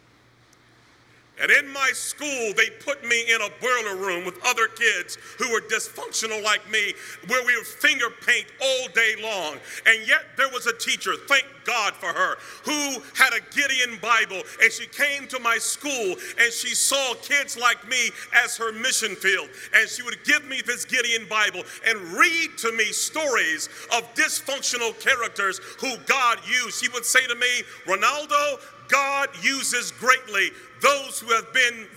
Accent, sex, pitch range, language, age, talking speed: American, male, 235-300 Hz, English, 40-59, 170 wpm